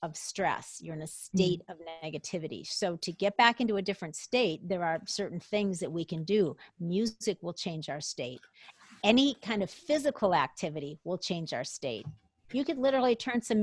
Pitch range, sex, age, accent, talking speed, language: 180-230 Hz, female, 40-59, American, 190 wpm, English